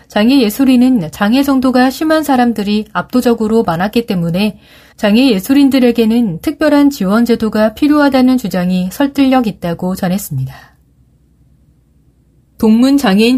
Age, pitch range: 30-49, 190-255 Hz